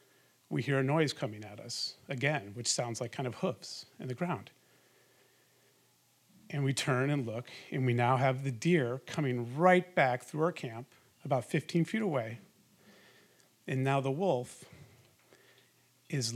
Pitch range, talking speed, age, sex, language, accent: 125-155 Hz, 160 wpm, 40-59, male, English, American